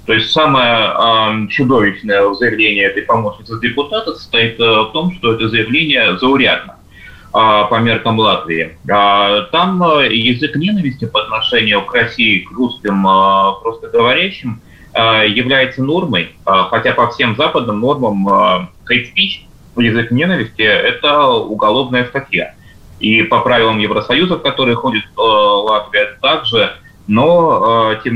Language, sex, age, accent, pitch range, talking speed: Russian, male, 30-49, native, 110-155 Hz, 135 wpm